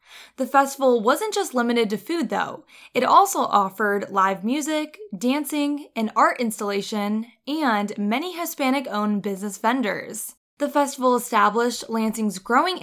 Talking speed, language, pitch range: 125 wpm, English, 210-275 Hz